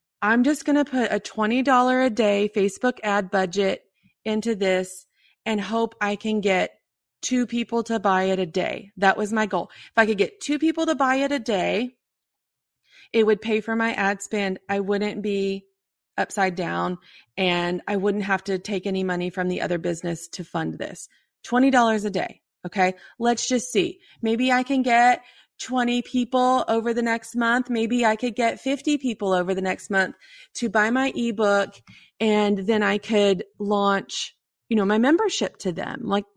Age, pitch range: 30-49, 195-240 Hz